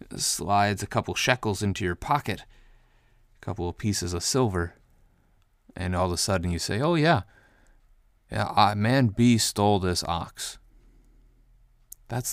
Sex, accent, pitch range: male, American, 90-110 Hz